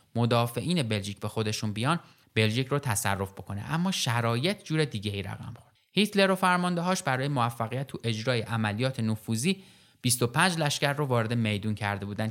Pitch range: 110-150 Hz